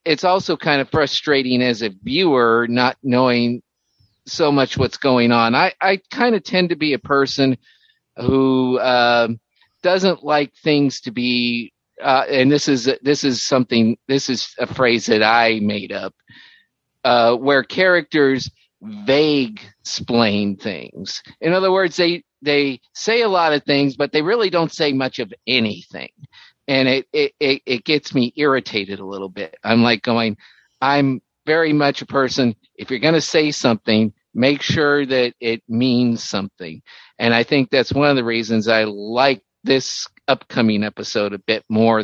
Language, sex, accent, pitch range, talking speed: English, male, American, 115-150 Hz, 165 wpm